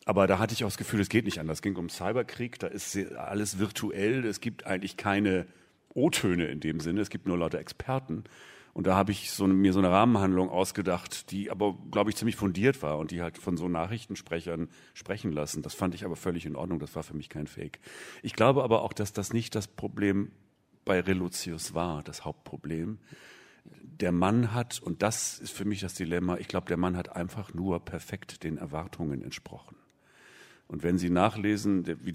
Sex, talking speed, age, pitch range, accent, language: male, 205 wpm, 40-59, 85-105 Hz, German, German